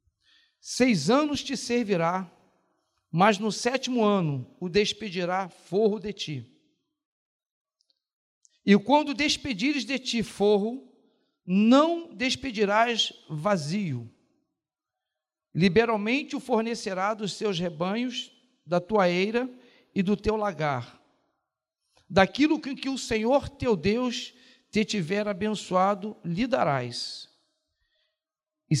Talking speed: 100 wpm